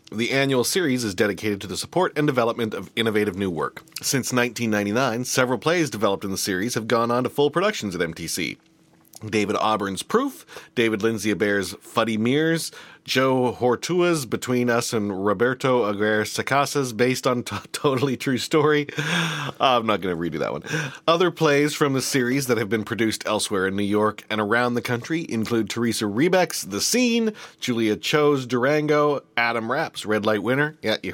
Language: English